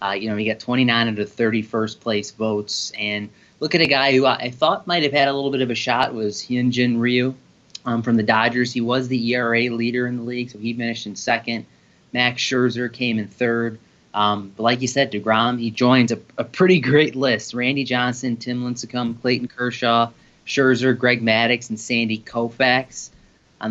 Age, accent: 30-49, American